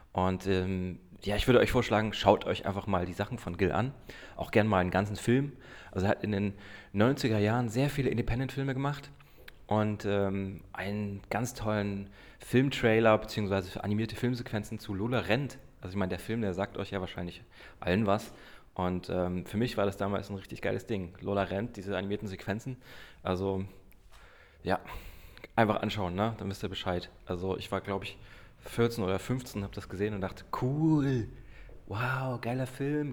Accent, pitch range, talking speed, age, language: German, 95-125 Hz, 180 wpm, 30-49, German